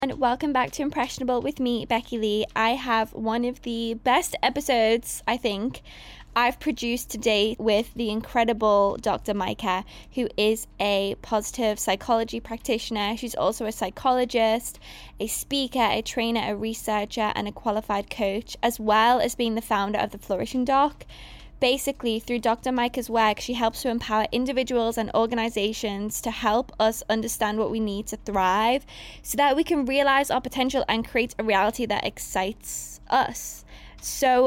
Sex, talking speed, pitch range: female, 160 wpm, 220-245 Hz